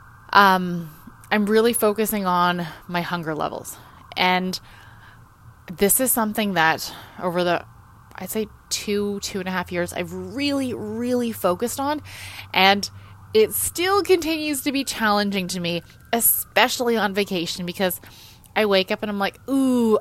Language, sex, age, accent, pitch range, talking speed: English, female, 20-39, American, 170-225 Hz, 145 wpm